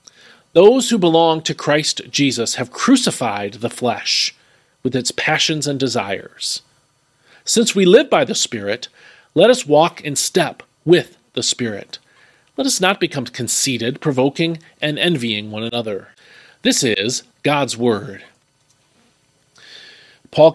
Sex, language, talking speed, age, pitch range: male, English, 130 wpm, 40-59, 130-185 Hz